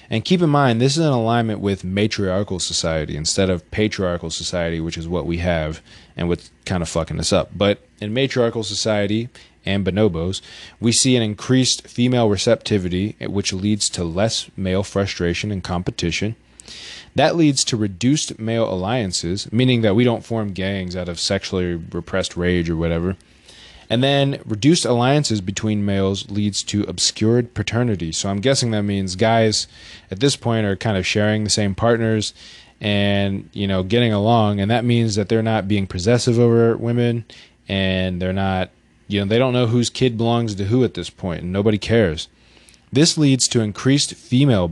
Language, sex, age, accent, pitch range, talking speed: English, male, 20-39, American, 95-115 Hz, 175 wpm